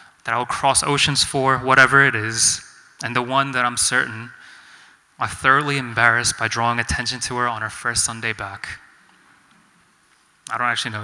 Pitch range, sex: 120-170 Hz, male